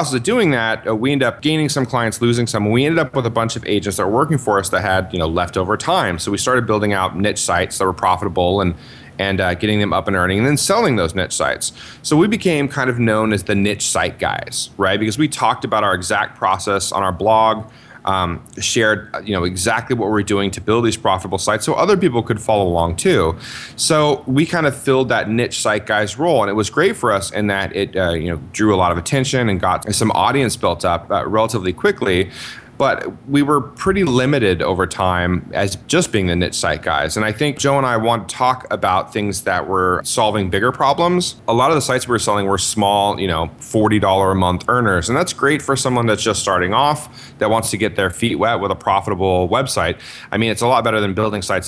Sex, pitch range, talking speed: male, 95-130 Hz, 245 wpm